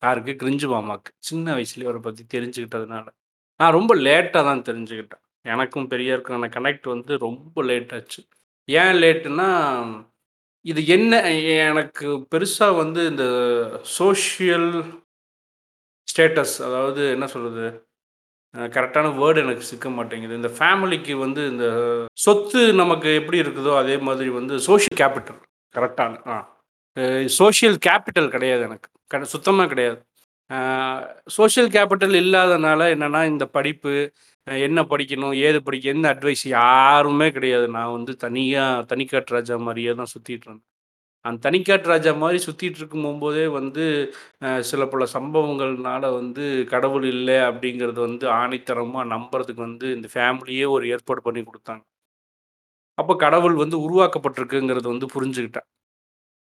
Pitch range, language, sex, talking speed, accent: 120-155 Hz, Tamil, male, 120 wpm, native